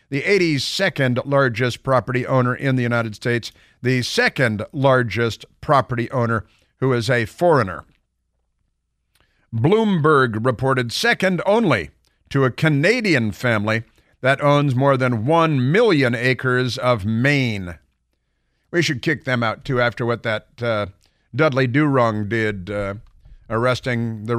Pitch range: 110-140 Hz